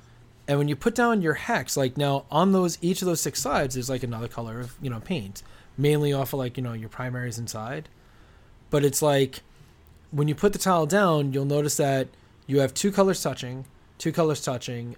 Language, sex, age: English, male, 20-39